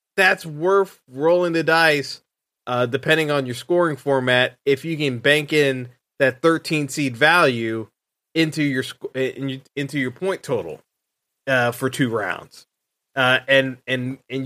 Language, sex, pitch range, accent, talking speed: English, male, 130-170 Hz, American, 145 wpm